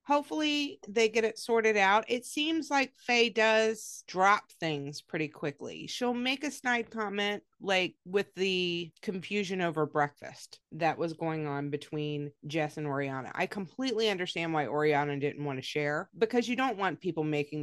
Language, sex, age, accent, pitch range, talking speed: English, female, 30-49, American, 150-205 Hz, 165 wpm